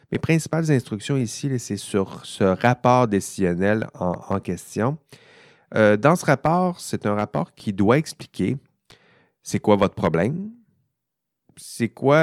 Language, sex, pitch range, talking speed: French, male, 95-125 Hz, 135 wpm